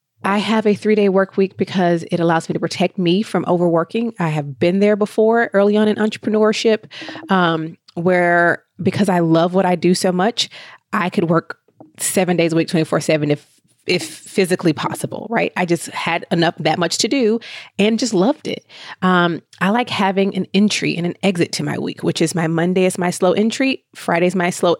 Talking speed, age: 200 wpm, 20-39